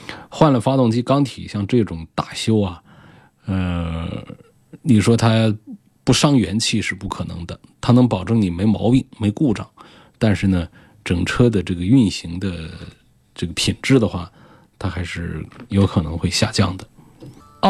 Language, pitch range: Chinese, 90-115 Hz